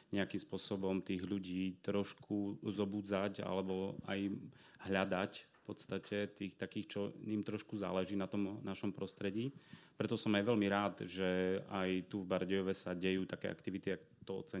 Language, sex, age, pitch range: Slovak, male, 30-49, 95-105 Hz